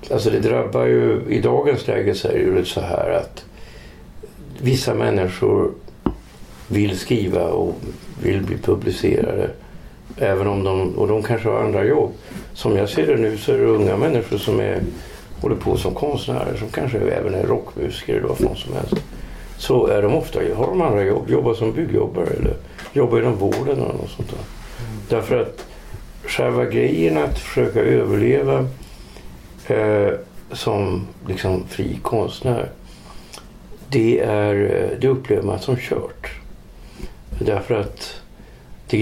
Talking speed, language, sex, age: 145 wpm, Swedish, male, 60-79